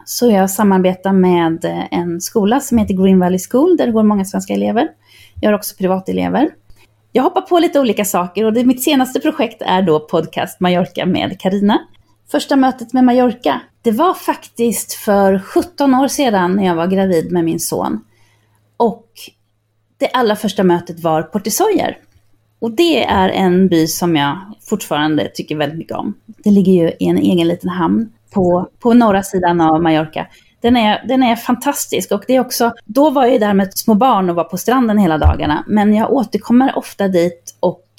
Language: Swedish